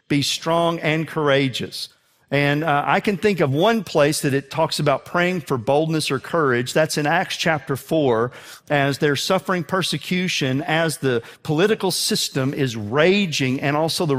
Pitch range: 140-180 Hz